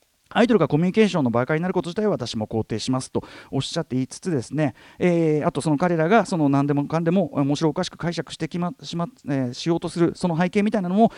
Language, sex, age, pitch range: Japanese, male, 40-59, 125-185 Hz